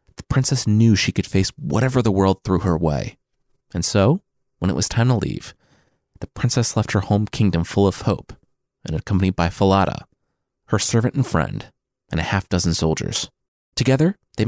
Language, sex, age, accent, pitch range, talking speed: English, male, 30-49, American, 95-130 Hz, 180 wpm